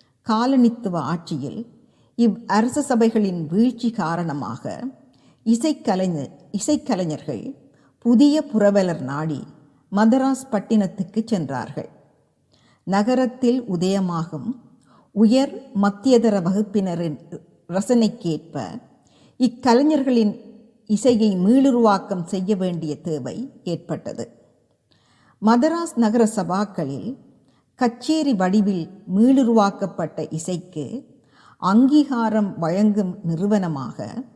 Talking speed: 65 wpm